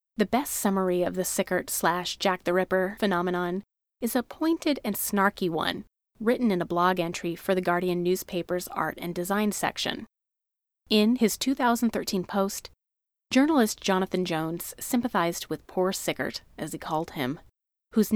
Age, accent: 30-49, American